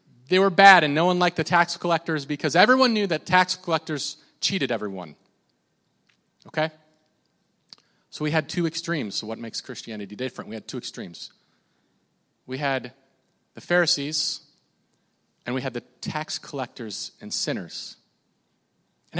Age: 30-49